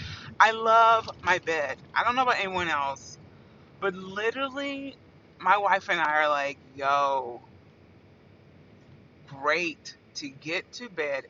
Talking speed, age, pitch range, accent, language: 125 wpm, 30-49, 145-205 Hz, American, English